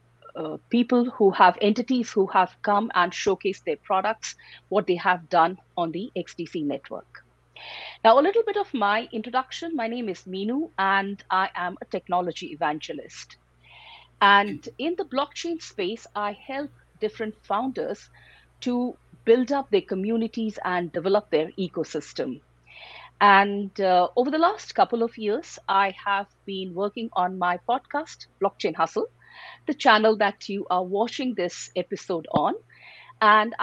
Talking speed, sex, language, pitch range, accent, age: 145 wpm, female, English, 180-250 Hz, Indian, 50-69